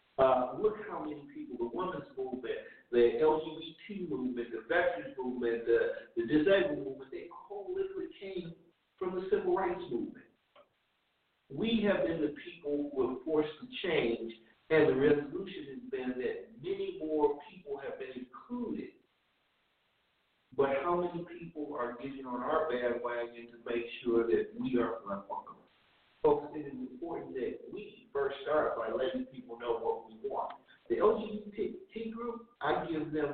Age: 50-69